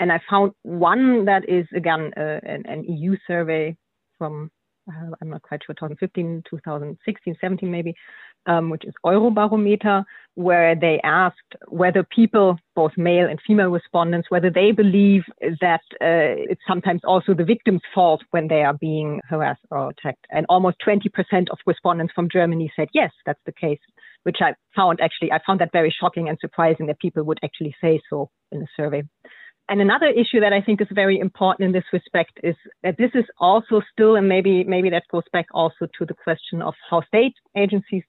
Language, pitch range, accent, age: English, 170-205 Hz, German, 30-49